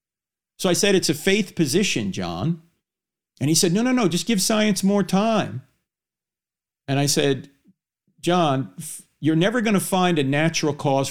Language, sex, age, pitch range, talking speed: English, male, 50-69, 125-195 Hz, 165 wpm